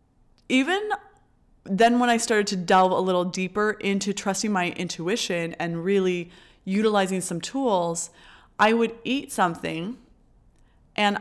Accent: American